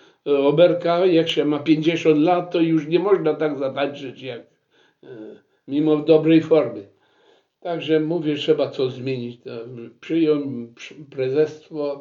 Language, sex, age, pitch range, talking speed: Polish, male, 60-79, 140-195 Hz, 110 wpm